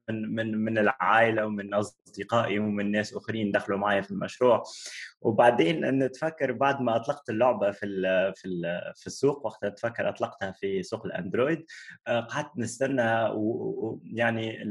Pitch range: 105-135 Hz